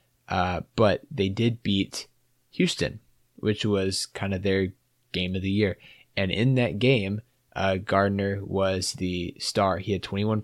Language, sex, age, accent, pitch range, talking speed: English, male, 20-39, American, 95-110 Hz, 155 wpm